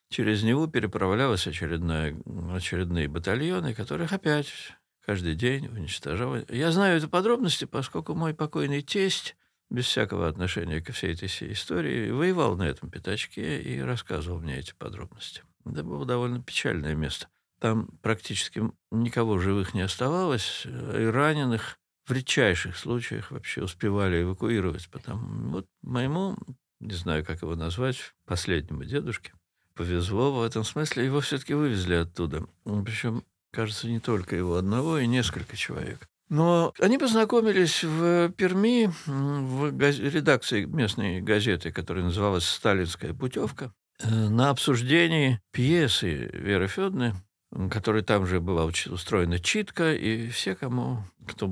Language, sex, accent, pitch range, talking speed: Russian, male, native, 90-140 Hz, 125 wpm